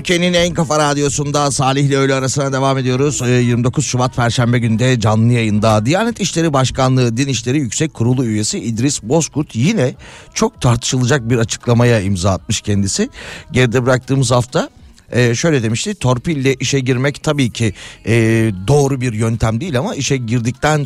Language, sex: Turkish, male